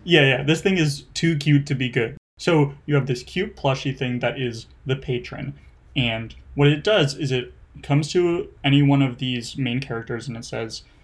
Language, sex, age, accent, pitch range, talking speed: English, male, 20-39, American, 120-145 Hz, 205 wpm